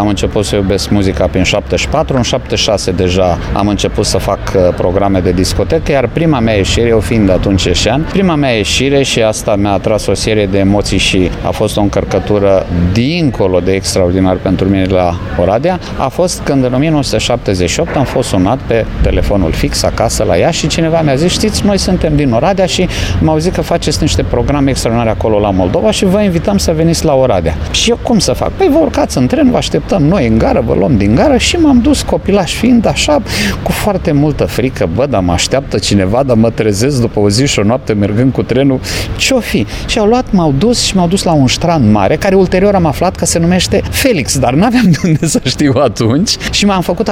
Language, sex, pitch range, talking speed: English, male, 100-160 Hz, 210 wpm